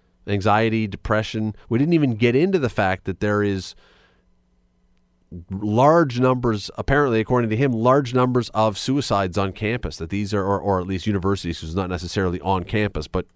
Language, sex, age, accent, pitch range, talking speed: English, male, 40-59, American, 90-125 Hz, 175 wpm